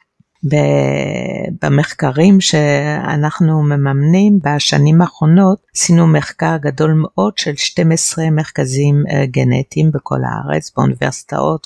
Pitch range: 135-170 Hz